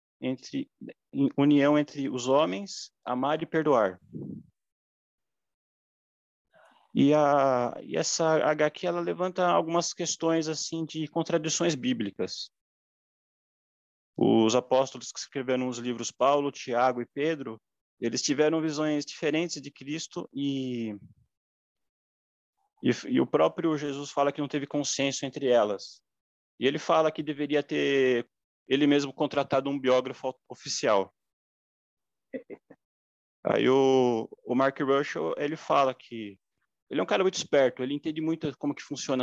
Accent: Brazilian